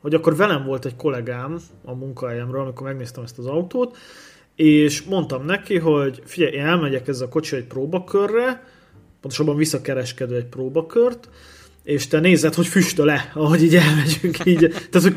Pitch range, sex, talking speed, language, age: 130-170 Hz, male, 160 wpm, Hungarian, 30-49